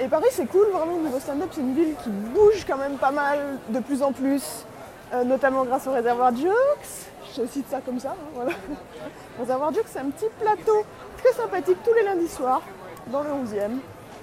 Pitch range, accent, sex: 230-280 Hz, French, female